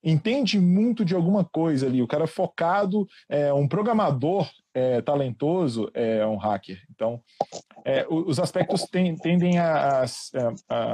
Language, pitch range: Portuguese, 150-195 Hz